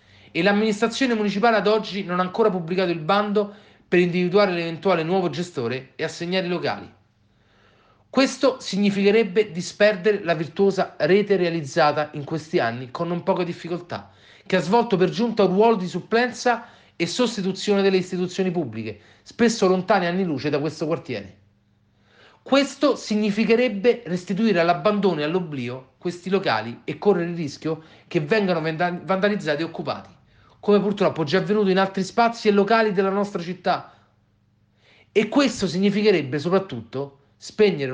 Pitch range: 140-200 Hz